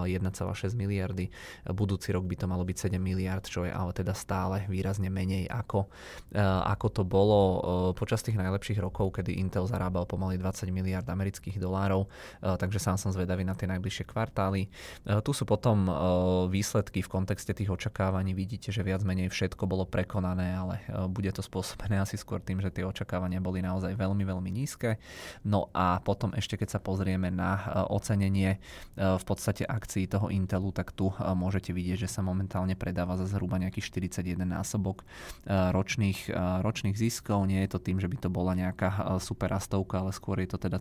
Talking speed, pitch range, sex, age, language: 170 wpm, 90-100 Hz, male, 20-39, Czech